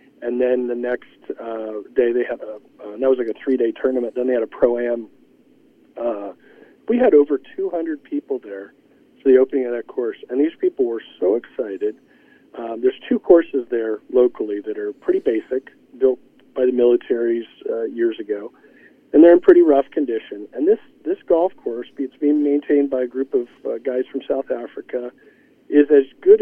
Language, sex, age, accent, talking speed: English, male, 40-59, American, 190 wpm